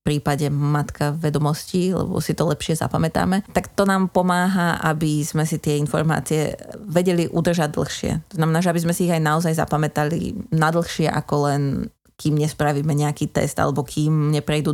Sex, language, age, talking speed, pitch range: female, Slovak, 20-39, 170 wpm, 150-170 Hz